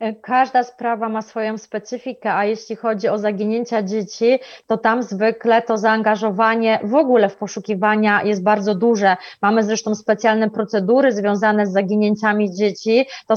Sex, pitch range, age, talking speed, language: female, 210-230 Hz, 20-39, 145 wpm, Polish